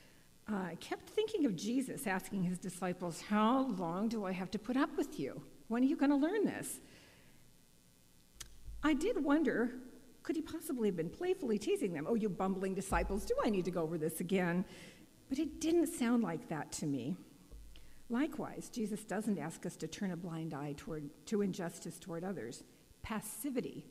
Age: 50-69